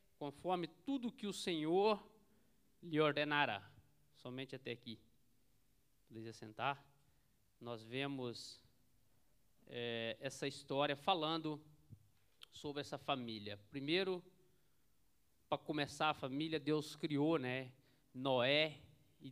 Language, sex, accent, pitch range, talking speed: Portuguese, male, Brazilian, 135-170 Hz, 100 wpm